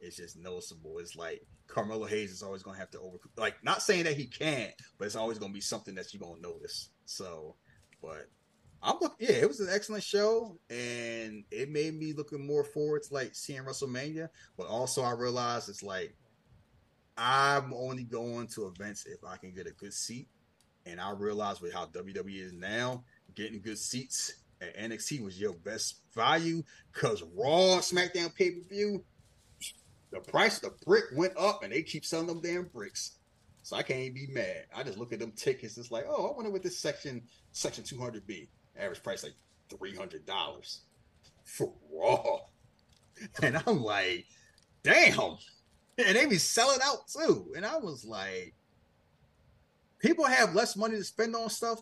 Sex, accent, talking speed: male, American, 185 wpm